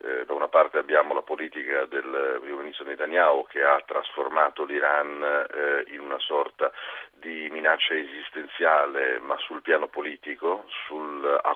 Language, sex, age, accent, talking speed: Italian, male, 40-59, native, 135 wpm